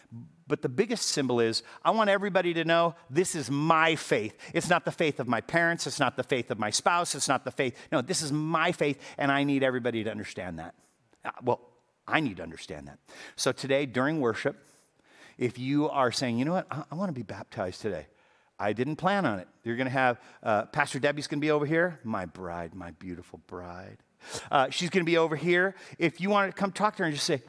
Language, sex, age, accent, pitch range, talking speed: English, male, 40-59, American, 130-180 Hz, 240 wpm